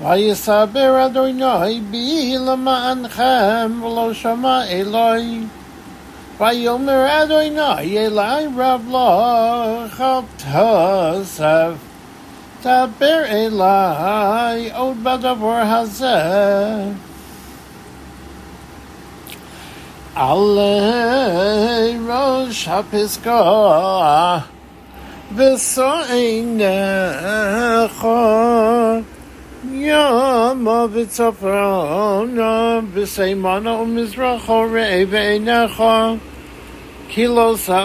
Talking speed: 45 wpm